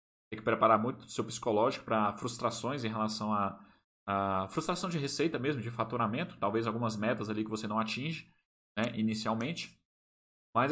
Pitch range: 110-180 Hz